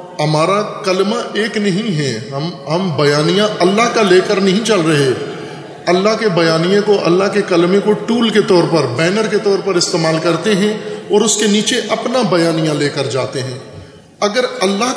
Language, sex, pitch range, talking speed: Urdu, male, 150-195 Hz, 185 wpm